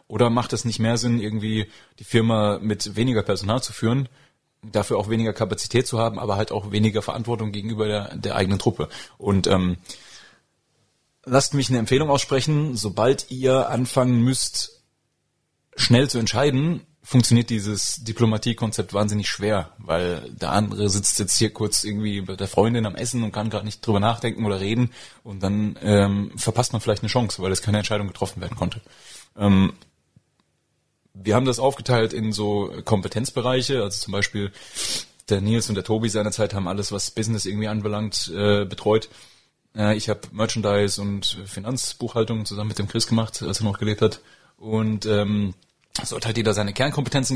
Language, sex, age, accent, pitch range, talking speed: German, male, 30-49, German, 100-120 Hz, 170 wpm